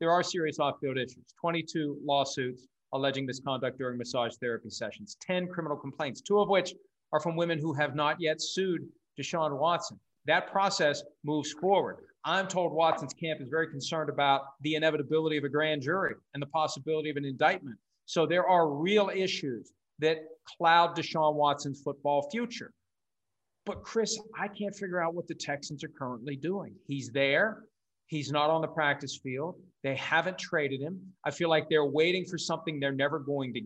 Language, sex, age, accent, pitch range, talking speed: English, male, 50-69, American, 145-185 Hz, 175 wpm